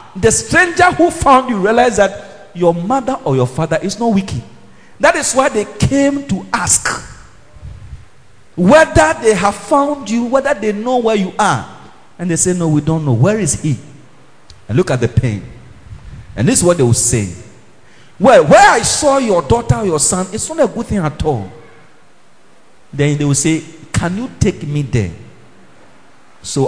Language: English